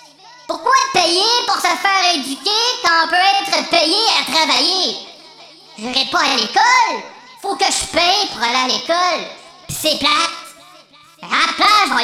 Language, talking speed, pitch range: French, 160 wpm, 300-395 Hz